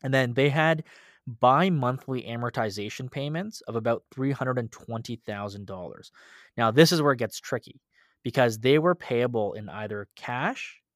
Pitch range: 105-135 Hz